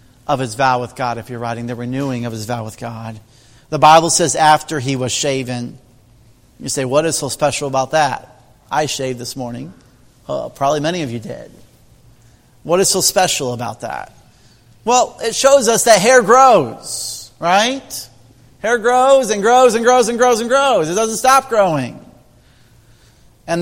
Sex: male